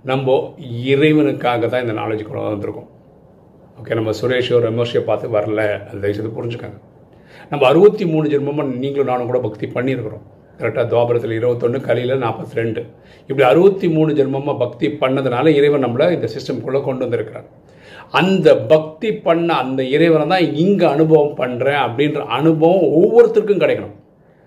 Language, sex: Tamil, male